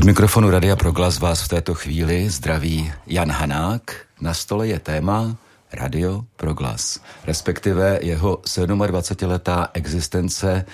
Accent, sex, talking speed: native, male, 115 wpm